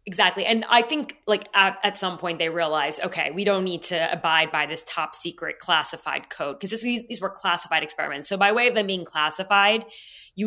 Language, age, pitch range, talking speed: English, 20-39, 165-215 Hz, 205 wpm